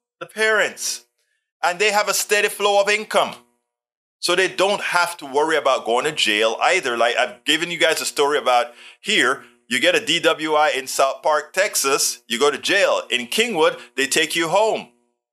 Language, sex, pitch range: English, male, 125-200 Hz